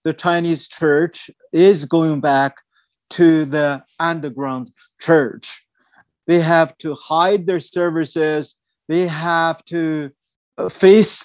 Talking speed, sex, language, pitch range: 105 wpm, male, English, 155-190 Hz